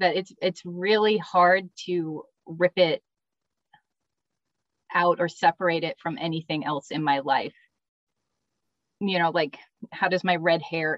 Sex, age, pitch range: female, 30-49, 165-255 Hz